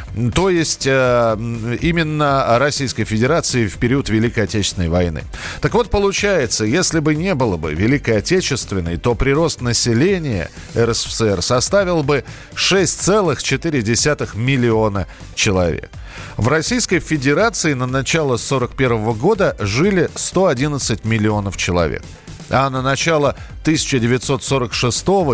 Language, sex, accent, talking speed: Russian, male, native, 105 wpm